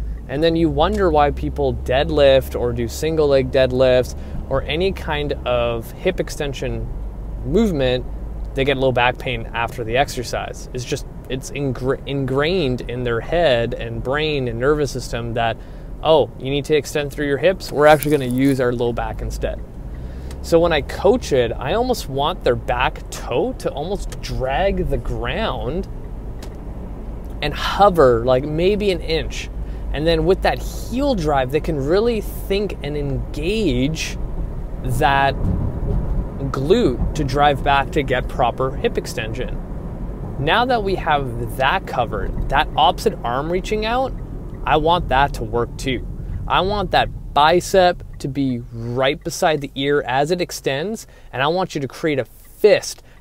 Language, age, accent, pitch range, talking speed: English, 20-39, American, 125-160 Hz, 155 wpm